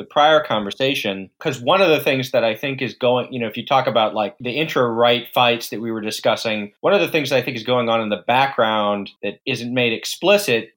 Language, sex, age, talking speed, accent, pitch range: English, male, 30-49, 250 wpm, American, 110-135 Hz